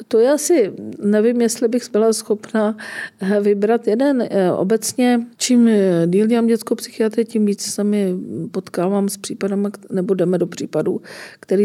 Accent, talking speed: native, 140 wpm